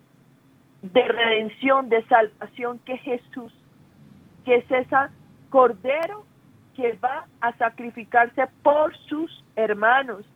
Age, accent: 40-59, Colombian